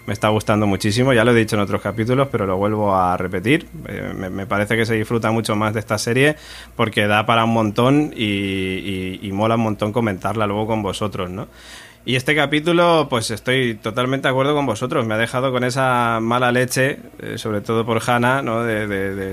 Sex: male